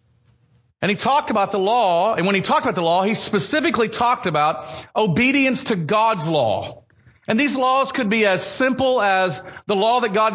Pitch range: 185-245 Hz